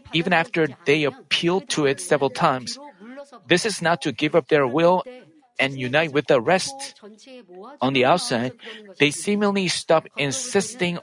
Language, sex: Korean, male